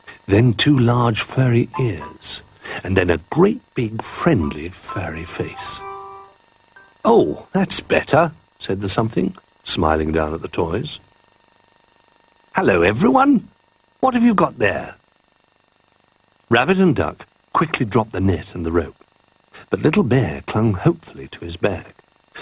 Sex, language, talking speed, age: male, English, 130 wpm, 60-79